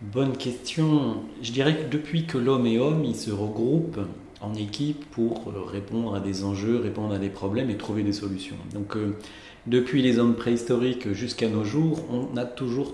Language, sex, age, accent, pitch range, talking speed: French, male, 40-59, French, 100-125 Hz, 185 wpm